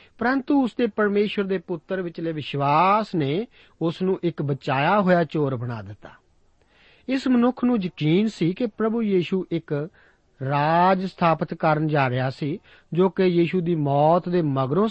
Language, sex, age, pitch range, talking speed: Punjabi, male, 50-69, 145-205 Hz, 155 wpm